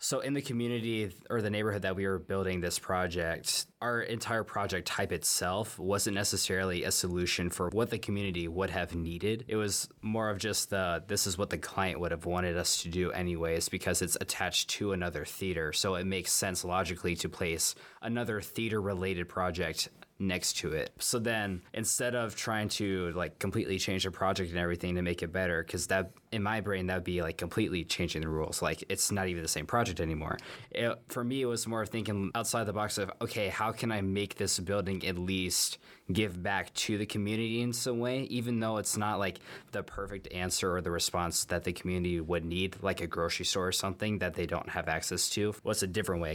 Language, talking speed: English, 210 wpm